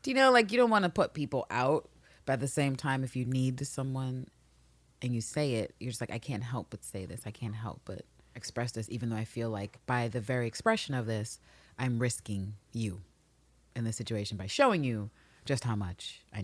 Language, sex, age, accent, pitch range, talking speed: English, female, 30-49, American, 110-135 Hz, 230 wpm